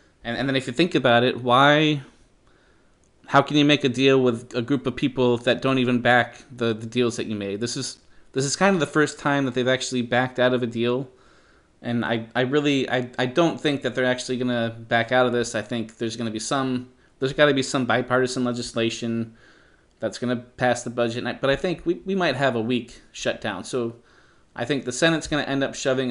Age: 30-49